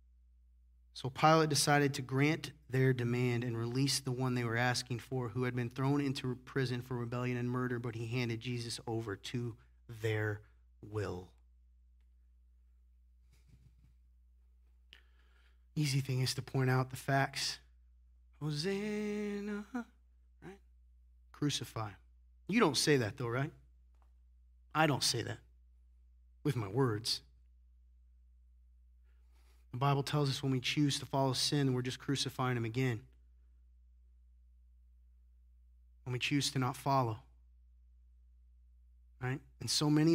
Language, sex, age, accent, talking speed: English, male, 30-49, American, 125 wpm